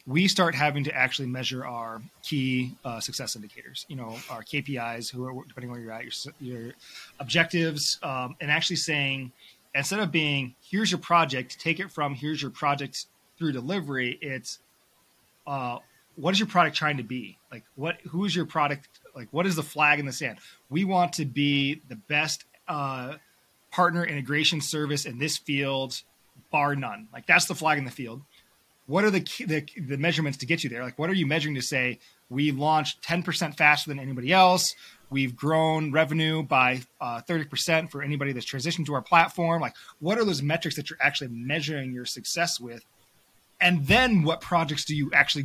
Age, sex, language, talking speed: 20-39, male, English, 190 wpm